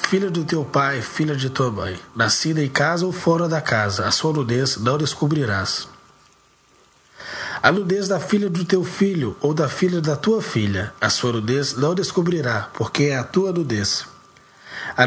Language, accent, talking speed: English, Brazilian, 175 wpm